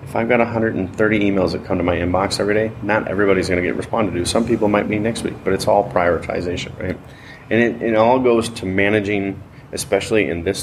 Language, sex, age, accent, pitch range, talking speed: English, male, 30-49, American, 90-110 Hz, 225 wpm